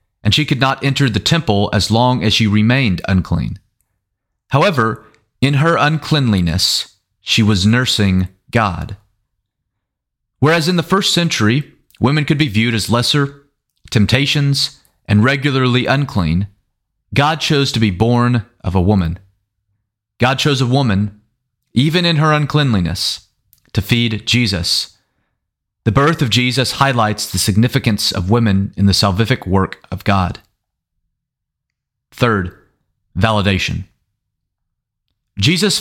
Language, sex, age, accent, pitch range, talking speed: English, male, 30-49, American, 100-135 Hz, 120 wpm